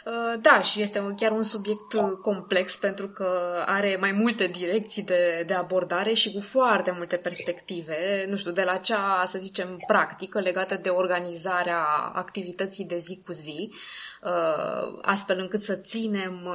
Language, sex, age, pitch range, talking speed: Romanian, female, 20-39, 185-230 Hz, 150 wpm